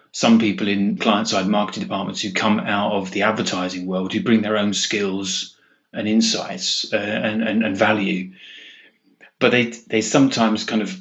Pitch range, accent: 100-115 Hz, British